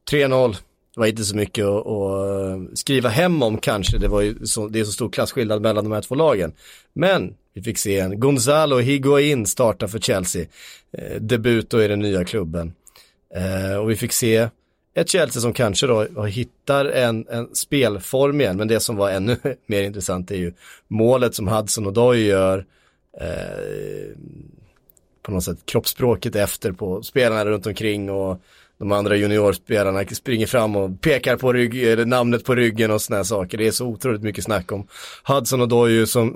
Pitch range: 100-120 Hz